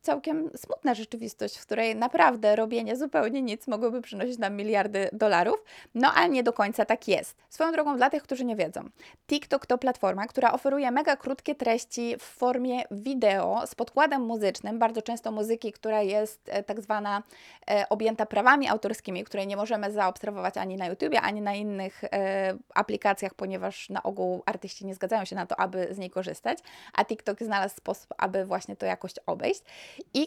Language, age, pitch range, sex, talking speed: Polish, 20-39, 205-265 Hz, female, 170 wpm